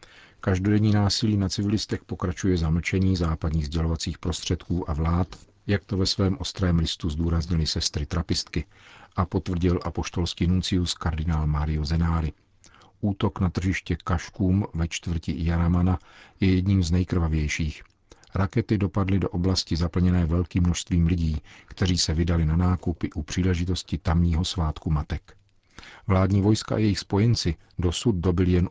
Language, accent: Czech, native